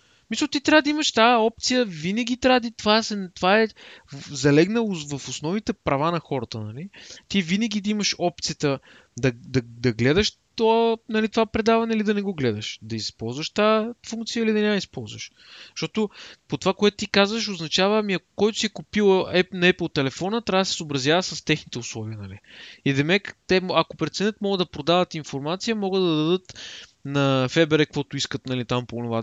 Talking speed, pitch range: 185 wpm, 135-215 Hz